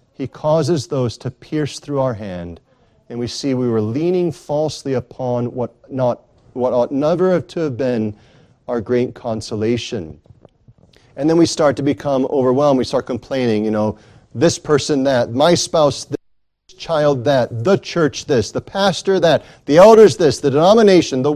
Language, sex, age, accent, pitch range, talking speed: English, male, 40-59, American, 125-170 Hz, 165 wpm